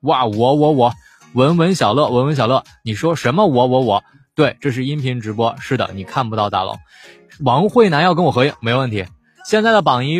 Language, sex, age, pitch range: Chinese, male, 20-39, 105-145 Hz